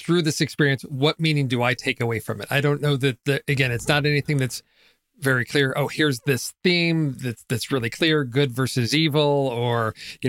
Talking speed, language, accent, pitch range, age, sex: 205 wpm, English, American, 125-145 Hz, 40-59, male